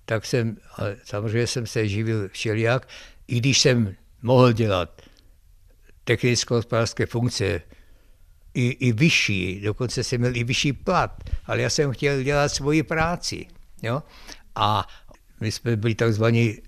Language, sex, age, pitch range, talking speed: Czech, male, 60-79, 105-125 Hz, 135 wpm